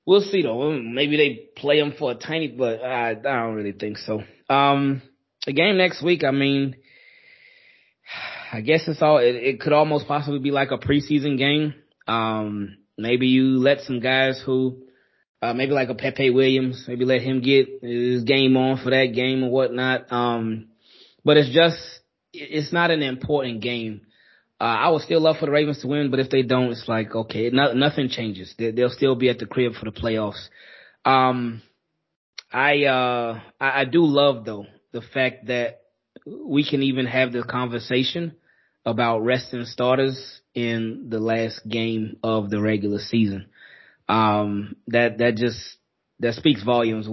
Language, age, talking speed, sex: English, 20-39, 175 wpm, male